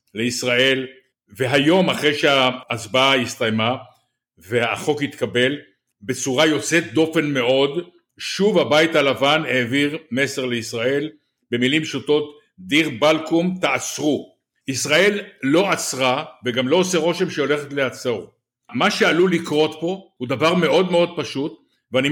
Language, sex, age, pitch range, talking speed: Hebrew, male, 60-79, 130-170 Hz, 110 wpm